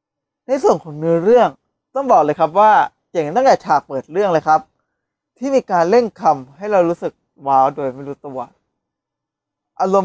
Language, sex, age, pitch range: Thai, male, 20-39, 140-210 Hz